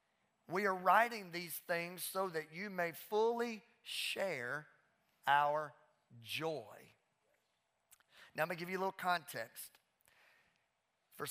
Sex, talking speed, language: male, 115 wpm, English